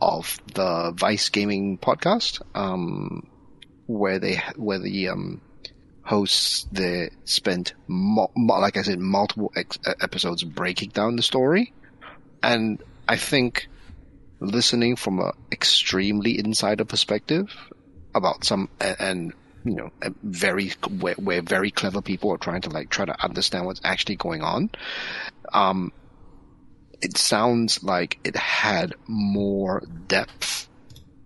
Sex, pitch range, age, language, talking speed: male, 90-110 Hz, 30-49, English, 125 wpm